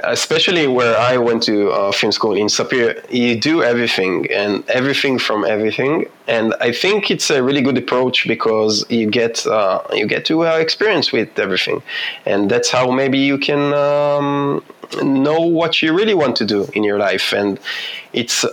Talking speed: 180 wpm